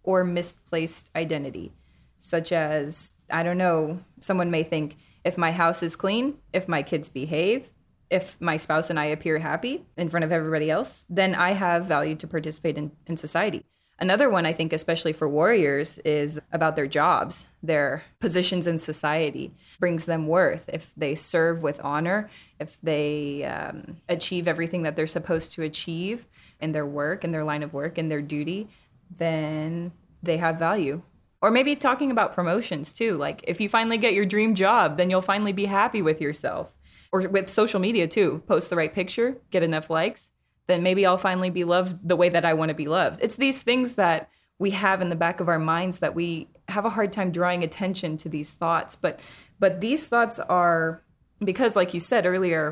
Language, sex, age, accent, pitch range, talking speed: English, female, 20-39, American, 155-185 Hz, 190 wpm